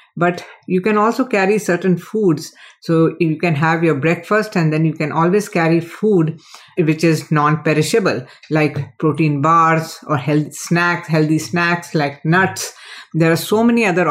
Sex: female